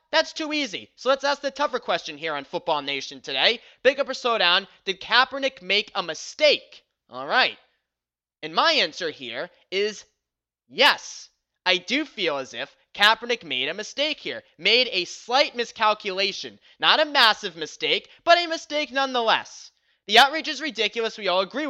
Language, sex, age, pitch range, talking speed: English, male, 20-39, 170-280 Hz, 170 wpm